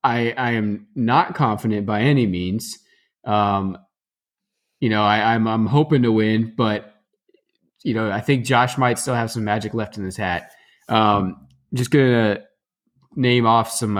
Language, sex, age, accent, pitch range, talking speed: English, male, 20-39, American, 100-120 Hz, 165 wpm